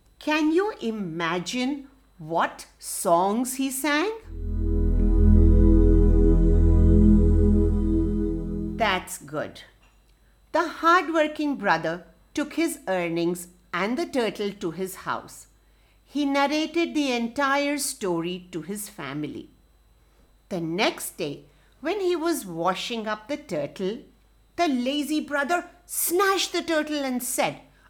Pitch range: 180-305 Hz